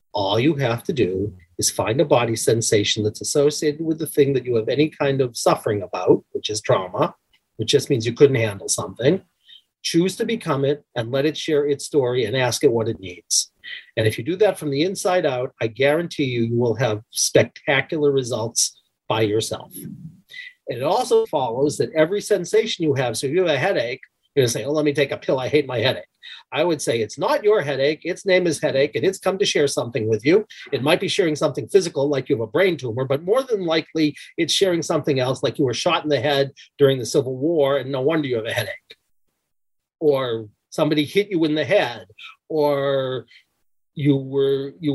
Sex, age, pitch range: male, 40-59, 130-170 Hz